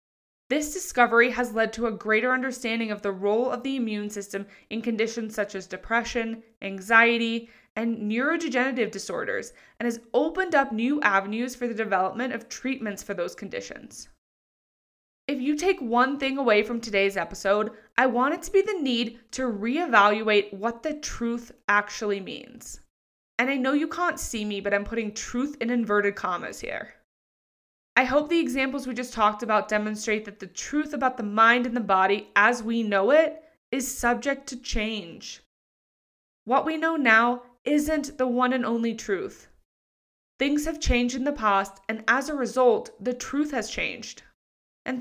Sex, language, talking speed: female, English, 170 wpm